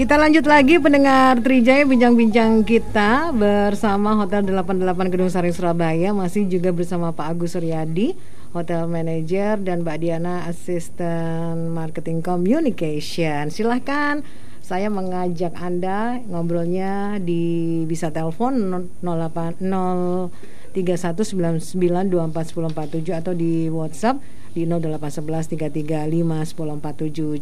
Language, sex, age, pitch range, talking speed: Indonesian, female, 50-69, 165-200 Hz, 90 wpm